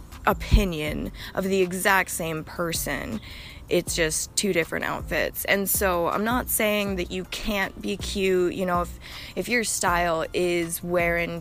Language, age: English, 20-39